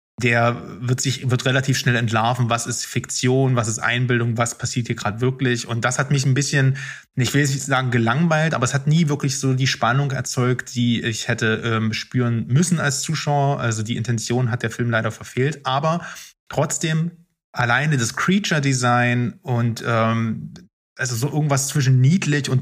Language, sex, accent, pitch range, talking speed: German, male, German, 115-140 Hz, 180 wpm